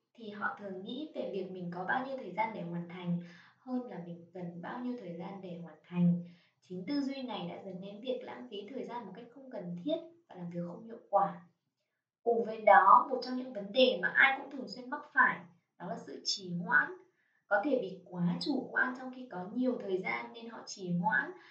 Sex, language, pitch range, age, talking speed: female, Vietnamese, 180-255 Hz, 20-39, 235 wpm